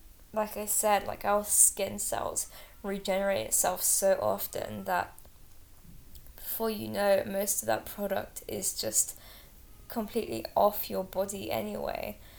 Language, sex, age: English, female, 10-29